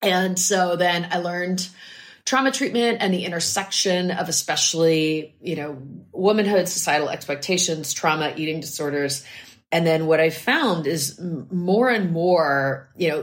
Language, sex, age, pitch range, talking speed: English, female, 30-49, 145-175 Hz, 140 wpm